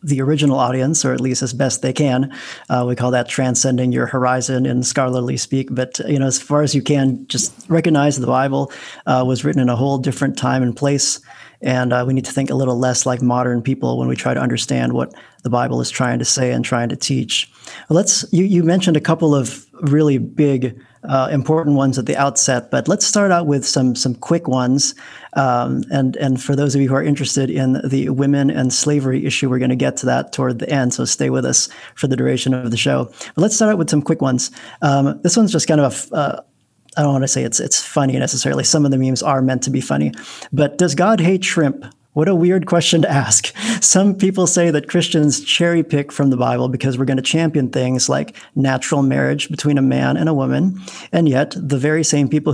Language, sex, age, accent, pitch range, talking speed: English, male, 40-59, American, 130-155 Hz, 235 wpm